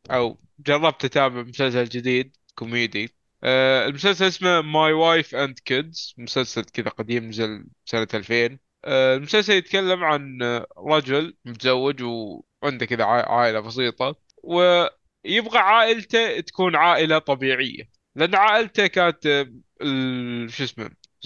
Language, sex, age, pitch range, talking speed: Arabic, male, 20-39, 130-175 Hz, 110 wpm